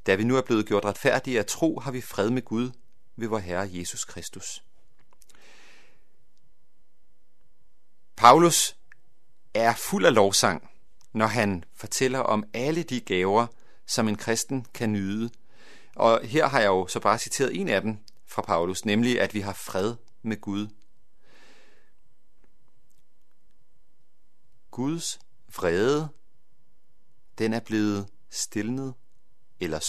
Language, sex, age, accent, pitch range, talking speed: Danish, male, 40-59, native, 100-125 Hz, 125 wpm